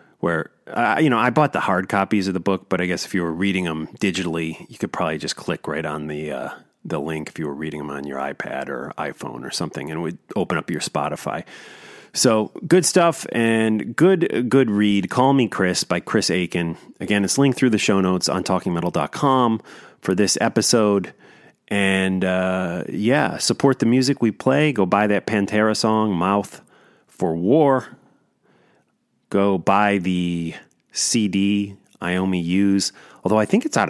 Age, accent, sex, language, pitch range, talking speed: 30-49, American, male, English, 85-110 Hz, 185 wpm